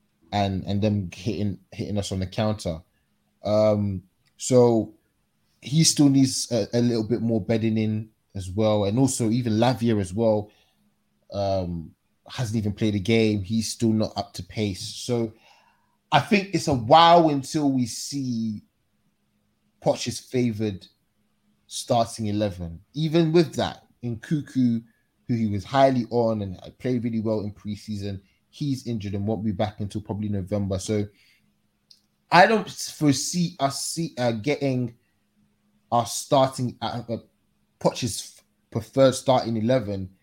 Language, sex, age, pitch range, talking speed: English, male, 20-39, 100-125 Hz, 145 wpm